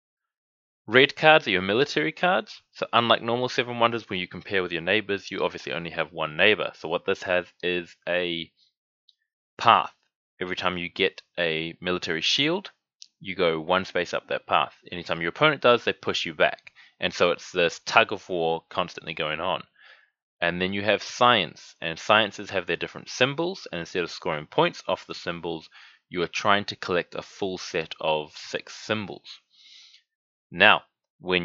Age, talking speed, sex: 20-39, 180 wpm, male